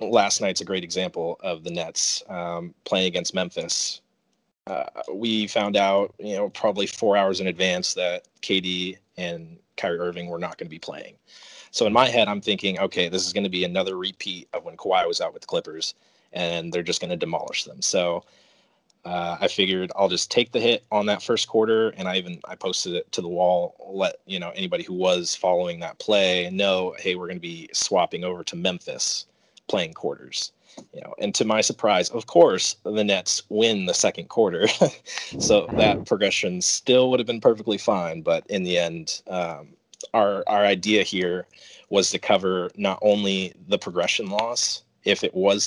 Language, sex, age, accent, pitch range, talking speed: English, male, 30-49, American, 90-105 Hz, 195 wpm